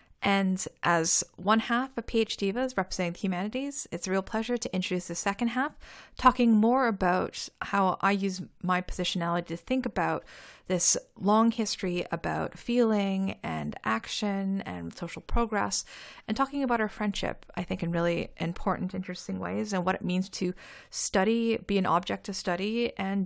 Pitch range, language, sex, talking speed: 175-220 Hz, English, female, 165 wpm